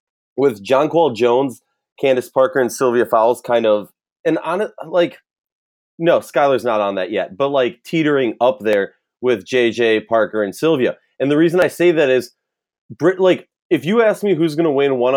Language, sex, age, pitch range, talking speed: English, male, 20-39, 110-140 Hz, 185 wpm